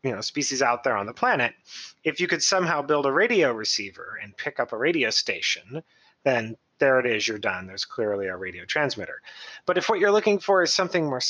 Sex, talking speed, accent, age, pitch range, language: male, 225 wpm, American, 30-49, 130-175 Hz, English